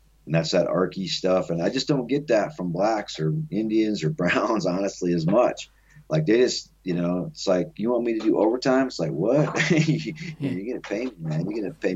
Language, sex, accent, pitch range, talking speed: English, male, American, 90-130 Hz, 225 wpm